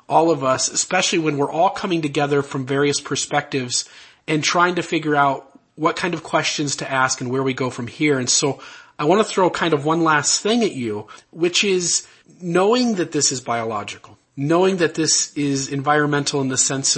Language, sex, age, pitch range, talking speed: English, male, 30-49, 140-175 Hz, 200 wpm